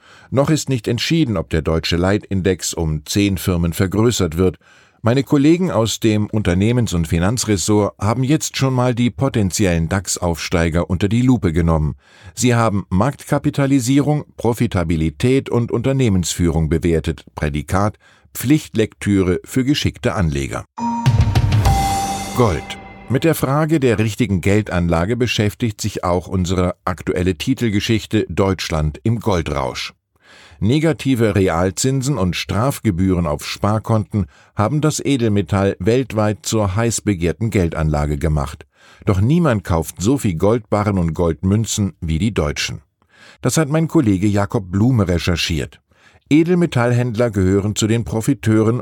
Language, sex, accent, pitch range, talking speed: German, male, German, 90-120 Hz, 120 wpm